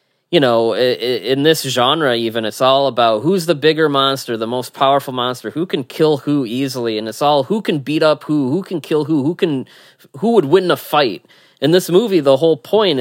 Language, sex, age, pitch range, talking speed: English, male, 20-39, 115-145 Hz, 215 wpm